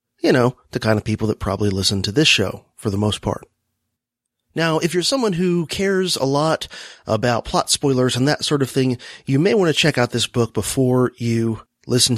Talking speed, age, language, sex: 210 wpm, 30-49, English, male